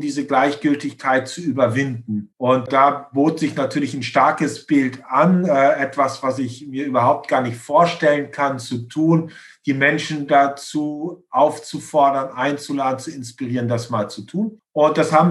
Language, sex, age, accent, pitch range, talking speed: German, male, 50-69, German, 130-150 Hz, 155 wpm